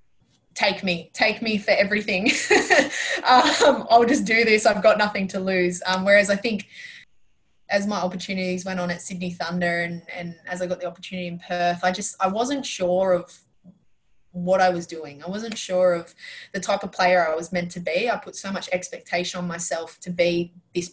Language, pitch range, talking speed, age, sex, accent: English, 170-195 Hz, 200 wpm, 20-39, female, Australian